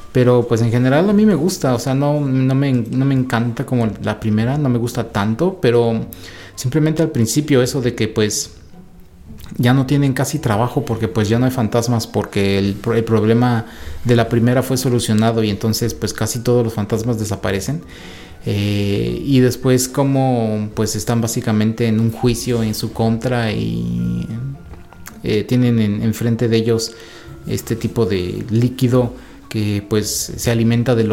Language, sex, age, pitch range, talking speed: Spanish, male, 30-49, 110-125 Hz, 165 wpm